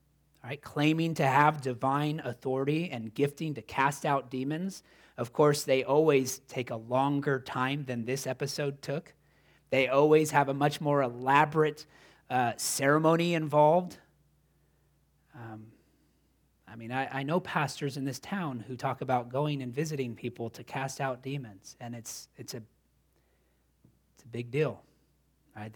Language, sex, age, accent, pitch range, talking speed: English, male, 30-49, American, 115-145 Hz, 150 wpm